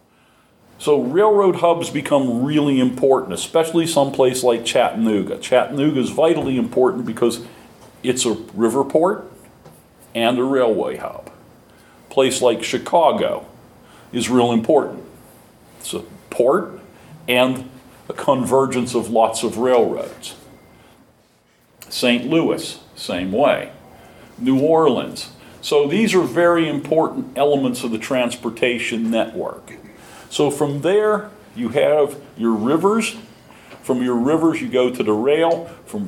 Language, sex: English, male